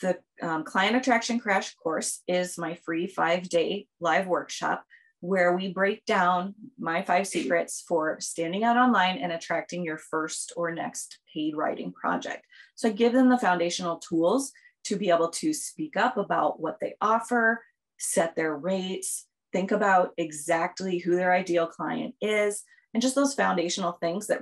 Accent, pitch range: American, 170-225 Hz